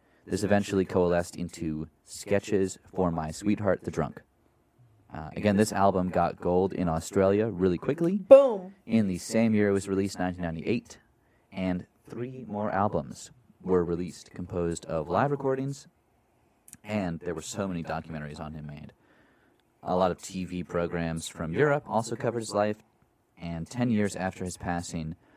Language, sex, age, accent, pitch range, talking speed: English, male, 30-49, American, 85-105 Hz, 155 wpm